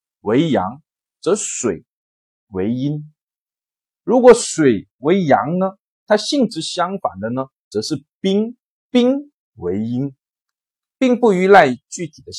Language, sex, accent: Chinese, male, native